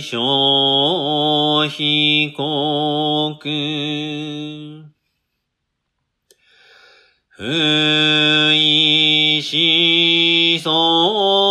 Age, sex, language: 40-59, male, Japanese